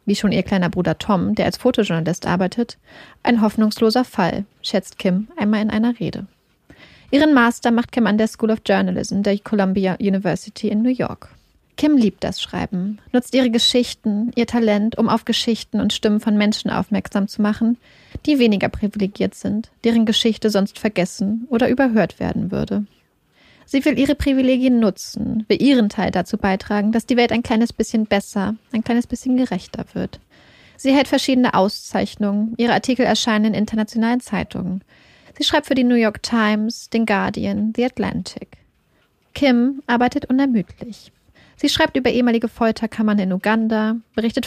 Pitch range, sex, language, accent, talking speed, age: 205-240 Hz, female, German, German, 160 wpm, 30-49